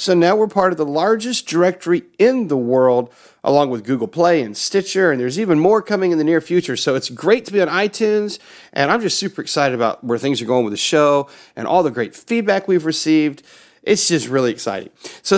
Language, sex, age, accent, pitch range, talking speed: English, male, 40-59, American, 130-190 Hz, 225 wpm